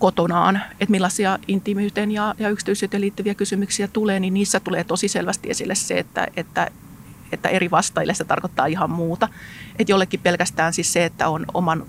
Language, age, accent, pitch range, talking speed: Finnish, 30-49, native, 175-205 Hz, 170 wpm